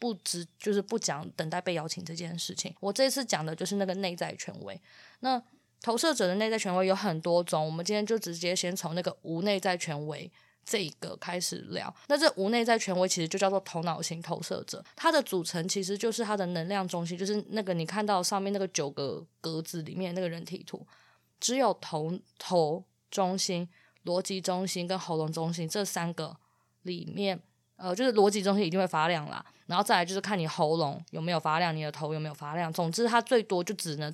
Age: 20-39